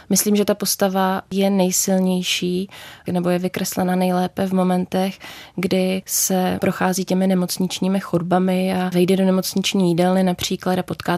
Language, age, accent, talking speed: Czech, 20-39, native, 140 wpm